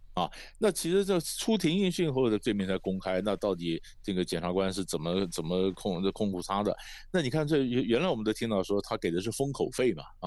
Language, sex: Chinese, male